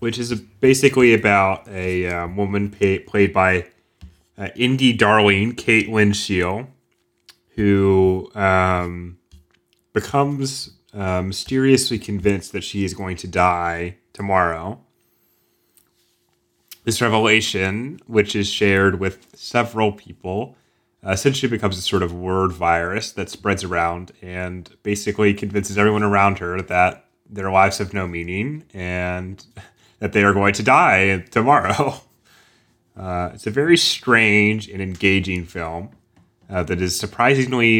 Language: English